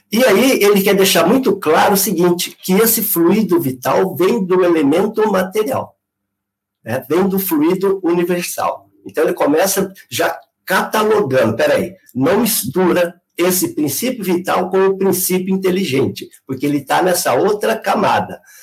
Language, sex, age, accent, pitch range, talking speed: Portuguese, male, 50-69, Brazilian, 160-210 Hz, 140 wpm